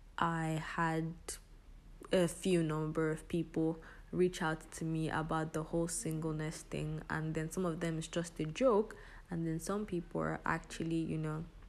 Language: English